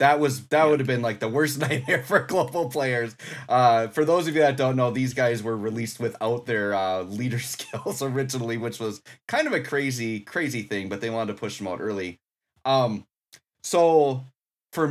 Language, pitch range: English, 110-140 Hz